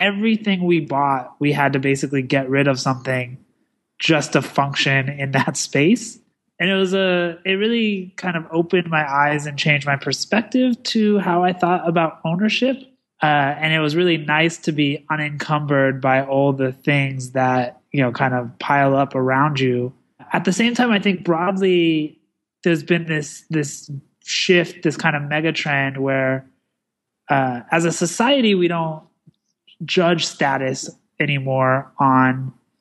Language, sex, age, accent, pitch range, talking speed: English, male, 20-39, American, 135-165 Hz, 160 wpm